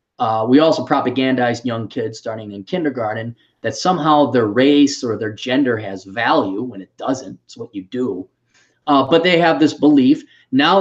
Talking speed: 180 wpm